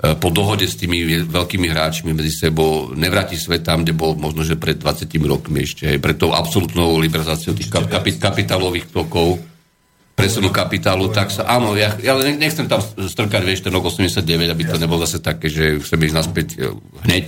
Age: 50-69